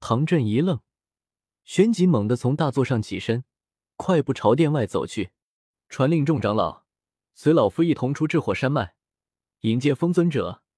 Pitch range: 110-160 Hz